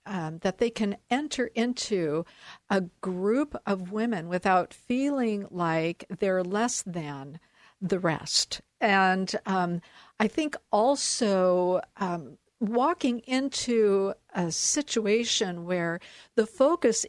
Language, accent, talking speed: English, American, 105 wpm